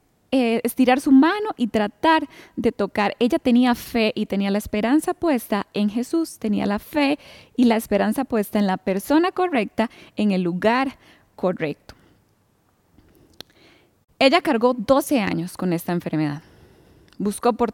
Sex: female